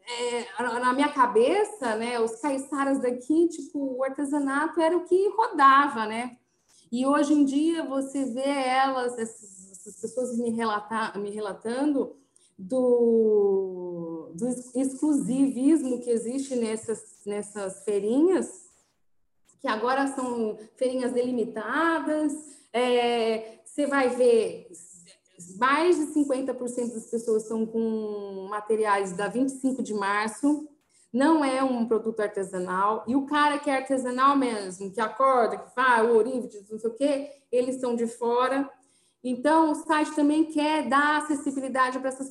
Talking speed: 130 wpm